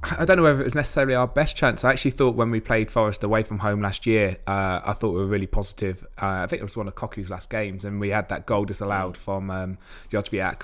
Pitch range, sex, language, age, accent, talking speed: 100-115 Hz, male, English, 20-39, British, 270 wpm